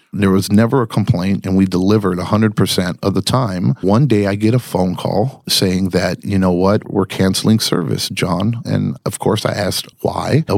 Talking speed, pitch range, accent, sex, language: 200 wpm, 100-125 Hz, American, male, English